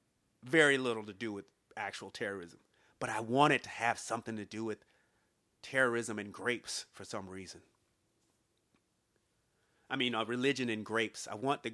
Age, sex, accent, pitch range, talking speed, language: 30-49, male, American, 115-145 Hz, 165 wpm, English